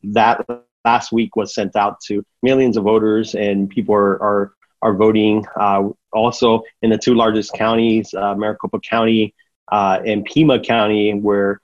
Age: 30-49